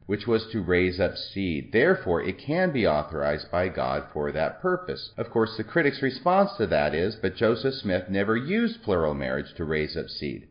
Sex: male